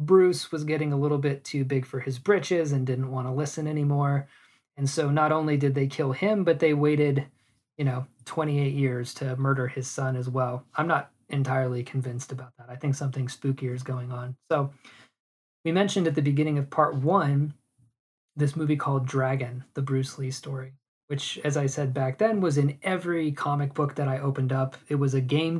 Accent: American